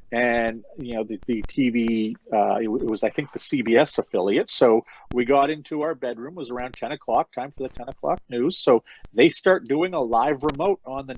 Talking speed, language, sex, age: 215 wpm, English, male, 40-59